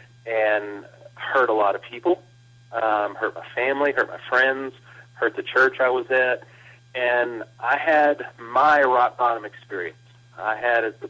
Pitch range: 110-130 Hz